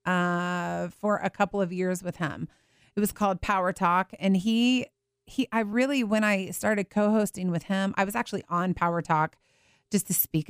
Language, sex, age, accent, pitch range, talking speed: English, female, 30-49, American, 180-210 Hz, 190 wpm